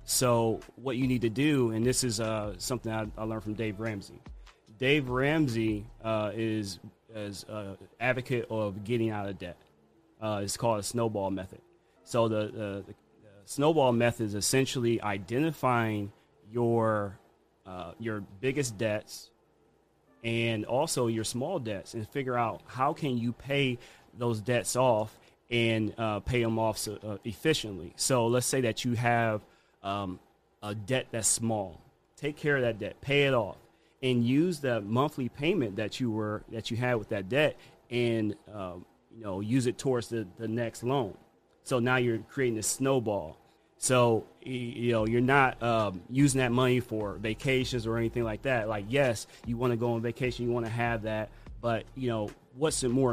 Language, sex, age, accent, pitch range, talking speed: English, male, 30-49, American, 105-125 Hz, 175 wpm